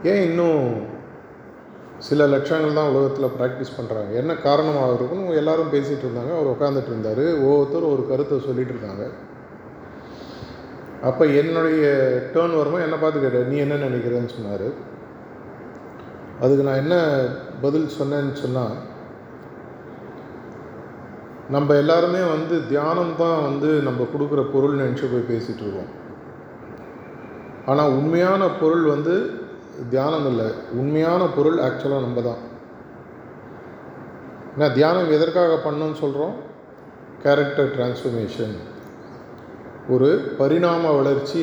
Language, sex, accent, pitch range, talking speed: Tamil, male, native, 130-155 Hz, 100 wpm